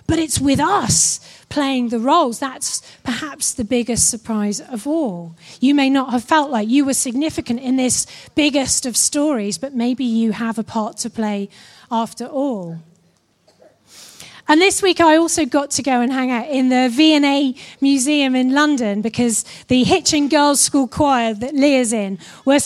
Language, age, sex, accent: English, 30-49, female, British